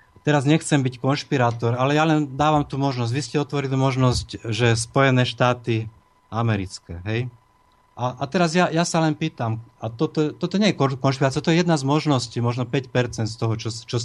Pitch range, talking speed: 115-145 Hz, 190 wpm